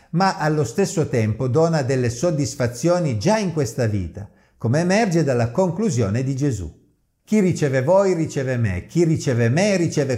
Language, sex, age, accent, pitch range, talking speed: Italian, male, 50-69, native, 115-180 Hz, 155 wpm